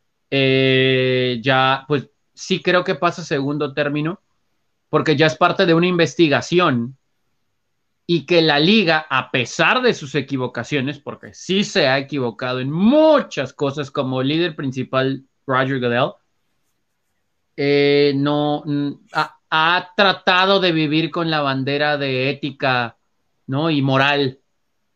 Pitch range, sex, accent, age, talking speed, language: 130-160 Hz, male, Mexican, 30-49, 130 wpm, Spanish